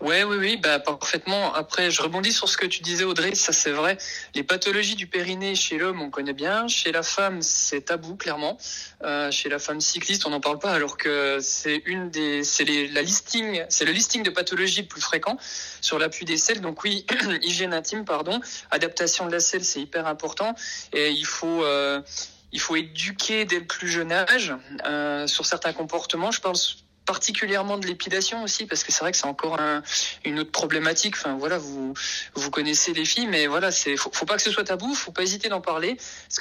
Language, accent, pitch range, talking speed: French, French, 155-200 Hz, 220 wpm